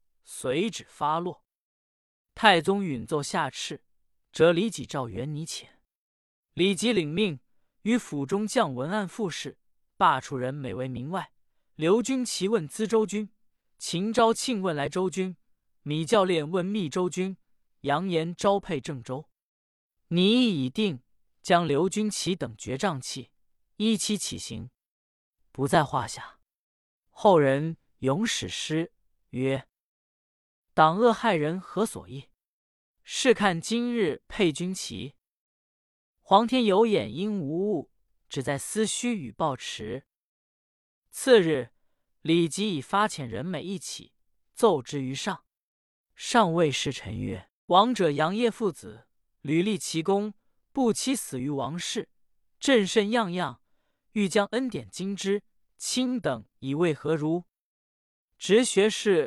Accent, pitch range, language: native, 140-210 Hz, Chinese